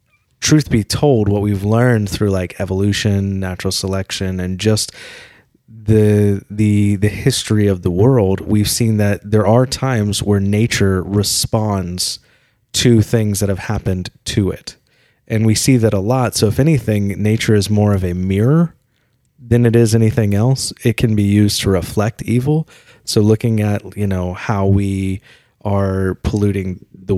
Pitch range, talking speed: 95-110 Hz, 160 wpm